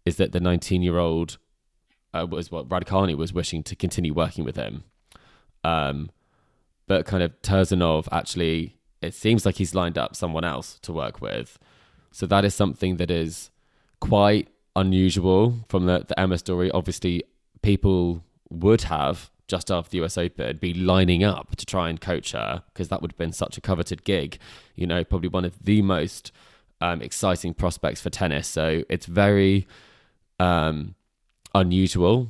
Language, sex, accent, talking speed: English, male, British, 160 wpm